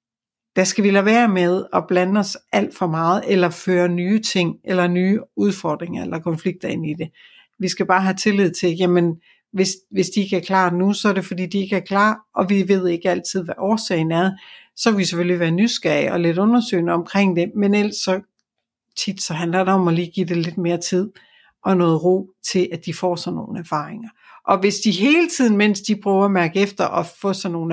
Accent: native